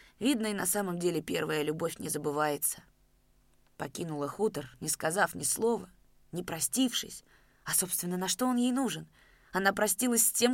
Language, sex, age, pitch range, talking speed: Russian, female, 20-39, 160-220 Hz, 160 wpm